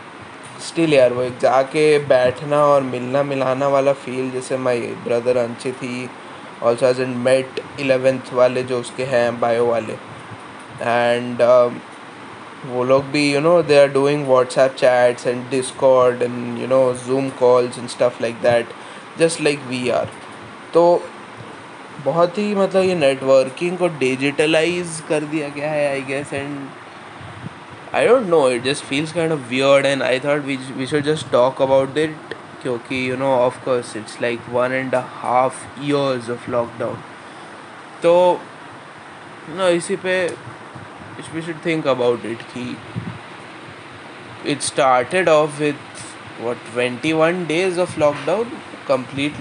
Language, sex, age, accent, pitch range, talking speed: Hindi, male, 20-39, native, 125-150 Hz, 145 wpm